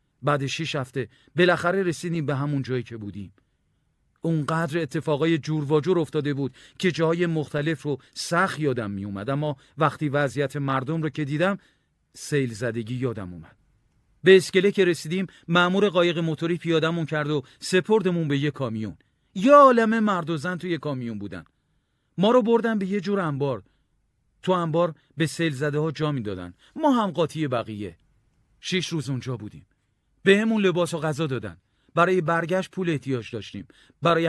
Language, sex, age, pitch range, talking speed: Persian, male, 40-59, 130-175 Hz, 160 wpm